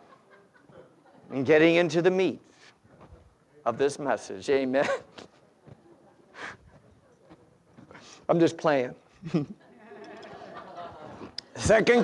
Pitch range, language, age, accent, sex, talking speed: 185-270 Hz, English, 50-69, American, male, 65 wpm